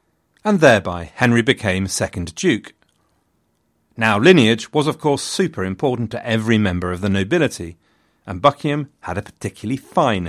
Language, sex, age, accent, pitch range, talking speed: English, male, 40-59, British, 95-140 Hz, 145 wpm